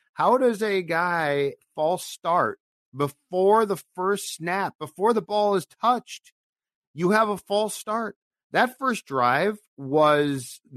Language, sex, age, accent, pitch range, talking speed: English, male, 50-69, American, 130-205 Hz, 135 wpm